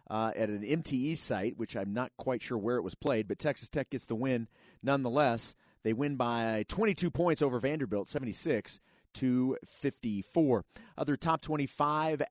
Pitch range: 120-155 Hz